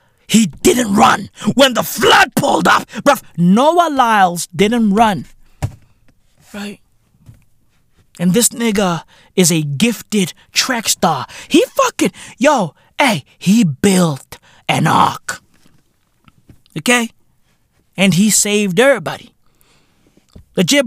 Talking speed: 105 wpm